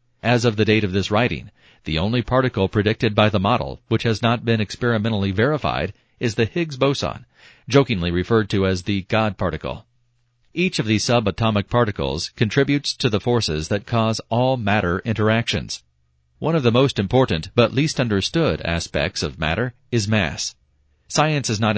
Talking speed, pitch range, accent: 170 wpm, 100-125 Hz, American